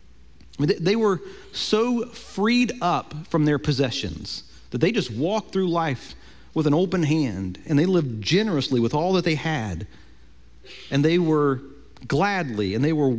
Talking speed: 155 wpm